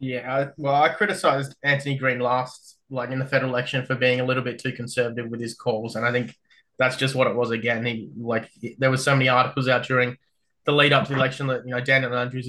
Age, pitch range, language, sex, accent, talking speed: 20-39, 120-135 Hz, English, male, Australian, 240 wpm